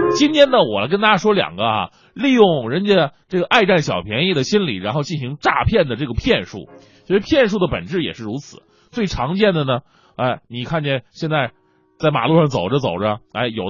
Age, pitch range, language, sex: 30-49, 135-205 Hz, Chinese, male